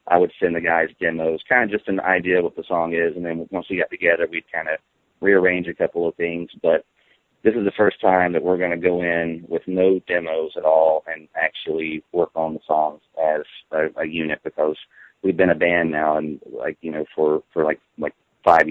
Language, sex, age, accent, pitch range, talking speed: English, male, 30-49, American, 75-95 Hz, 230 wpm